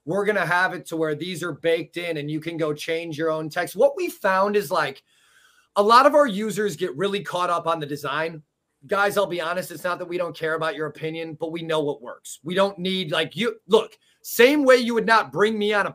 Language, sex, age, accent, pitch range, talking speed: English, male, 30-49, American, 155-195 Hz, 260 wpm